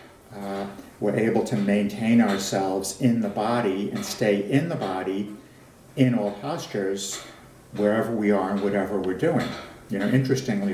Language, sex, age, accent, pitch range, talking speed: English, male, 60-79, American, 100-125 Hz, 150 wpm